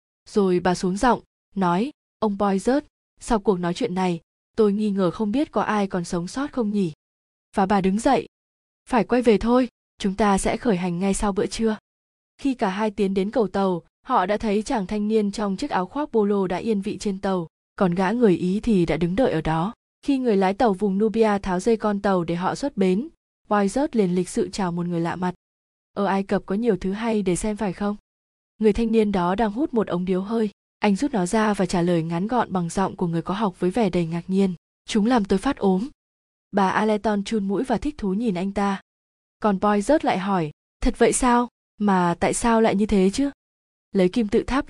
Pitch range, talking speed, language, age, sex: 185-230 Hz, 230 wpm, Vietnamese, 20-39, female